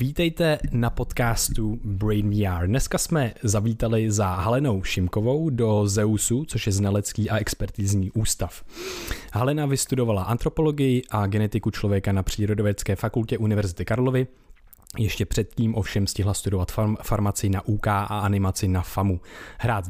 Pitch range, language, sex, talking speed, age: 100-120 Hz, Czech, male, 130 wpm, 20-39